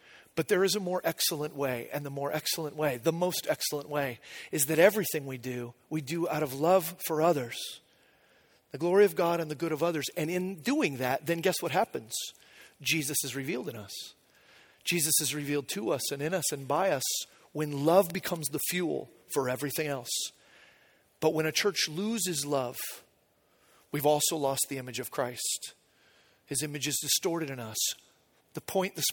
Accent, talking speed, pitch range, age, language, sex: American, 190 wpm, 145-185 Hz, 40-59, English, male